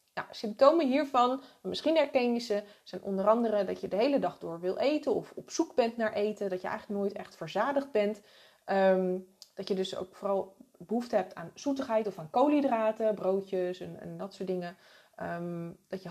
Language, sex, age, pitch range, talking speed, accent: Dutch, female, 20-39, 190-235 Hz, 185 wpm, Dutch